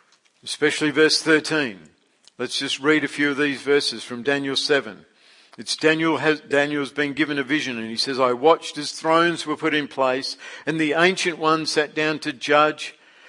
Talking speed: 185 wpm